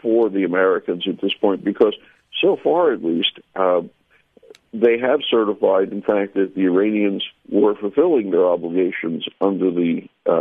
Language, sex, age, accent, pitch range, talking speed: English, male, 60-79, American, 90-115 Hz, 155 wpm